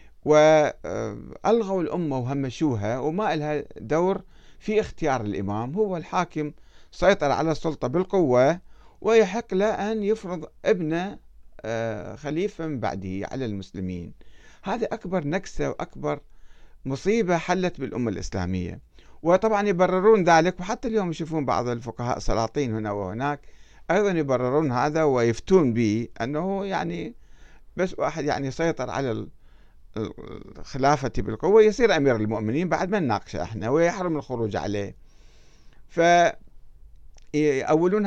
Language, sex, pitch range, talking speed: Arabic, male, 110-180 Hz, 110 wpm